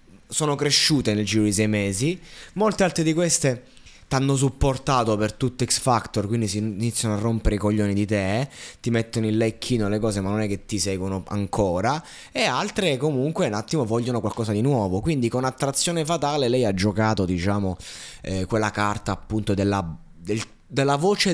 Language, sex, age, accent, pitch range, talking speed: Italian, male, 20-39, native, 100-135 Hz, 180 wpm